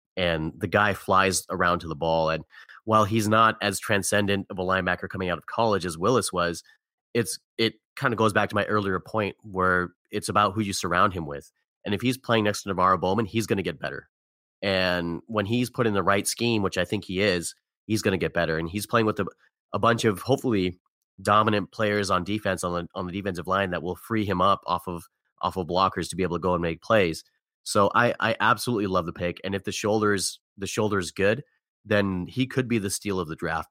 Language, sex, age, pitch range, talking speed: English, male, 30-49, 90-105 Hz, 240 wpm